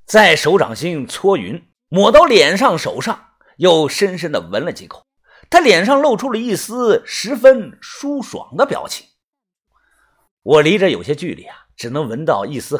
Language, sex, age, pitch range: Chinese, male, 50-69, 175-285 Hz